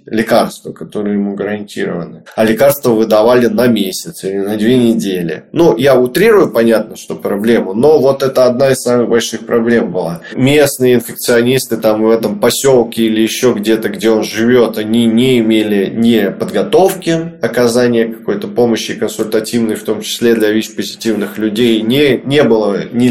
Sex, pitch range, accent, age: male, 110-135 Hz, native, 20-39